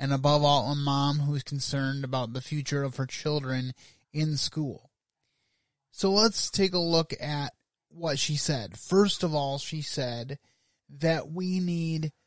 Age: 30-49